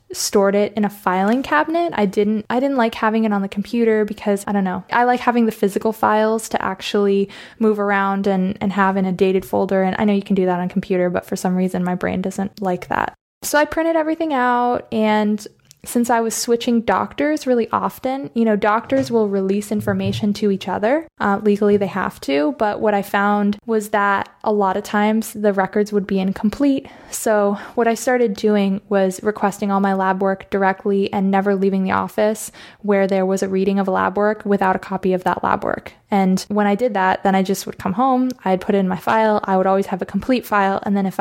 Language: English